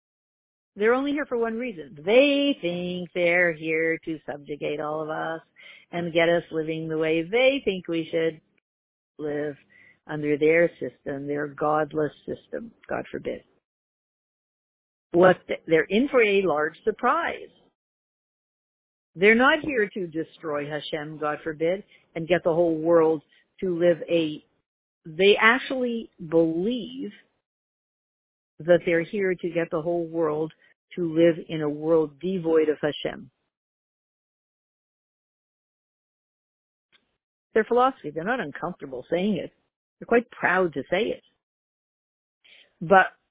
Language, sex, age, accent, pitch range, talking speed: English, female, 50-69, American, 160-230 Hz, 125 wpm